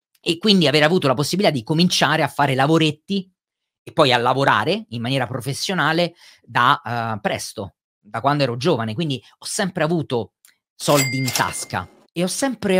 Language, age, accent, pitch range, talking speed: Italian, 40-59, native, 130-170 Hz, 165 wpm